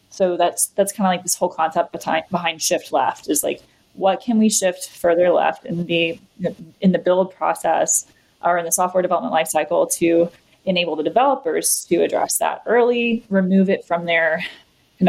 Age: 20-39